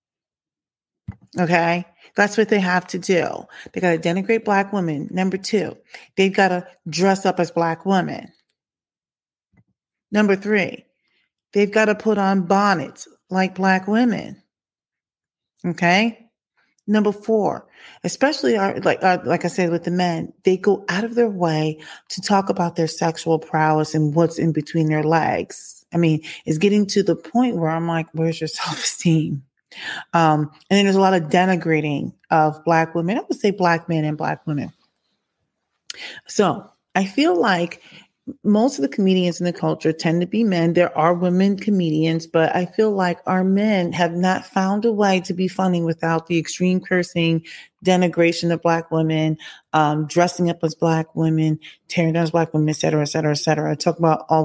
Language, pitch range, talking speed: English, 160-195 Hz, 175 wpm